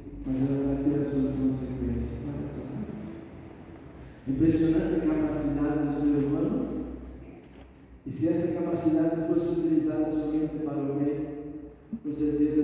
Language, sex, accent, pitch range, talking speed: Portuguese, male, Brazilian, 145-175 Hz, 125 wpm